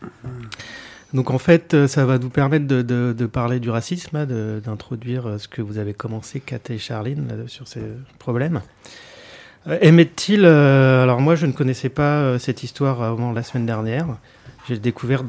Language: French